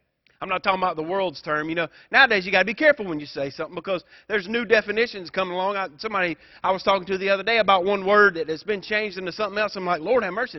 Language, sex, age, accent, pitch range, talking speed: English, male, 30-49, American, 175-220 Hz, 280 wpm